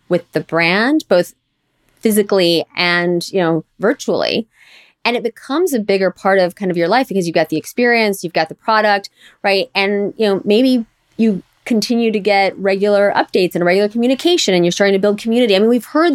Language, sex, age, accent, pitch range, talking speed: English, female, 30-49, American, 180-230 Hz, 195 wpm